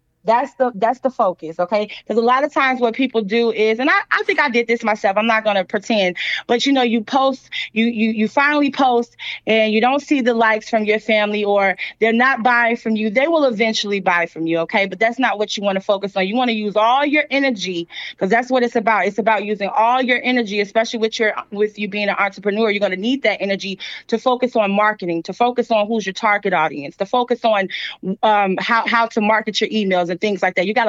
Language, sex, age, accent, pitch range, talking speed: English, female, 30-49, American, 210-250 Hz, 245 wpm